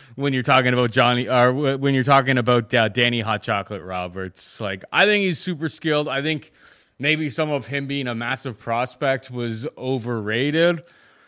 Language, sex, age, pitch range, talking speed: English, male, 30-49, 115-150 Hz, 175 wpm